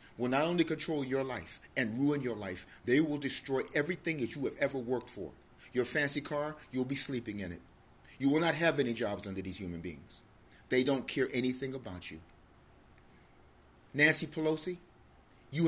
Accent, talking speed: American, 180 wpm